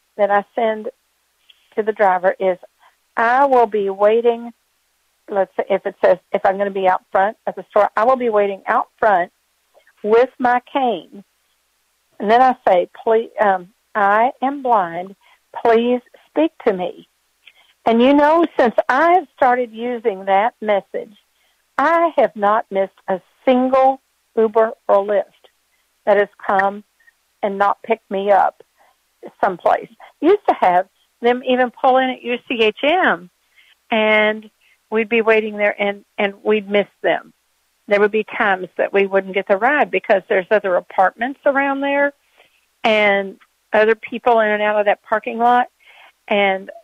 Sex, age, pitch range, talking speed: female, 50-69, 200-250 Hz, 155 wpm